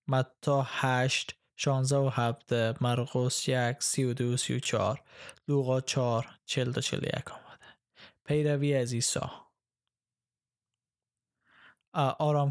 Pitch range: 120-145 Hz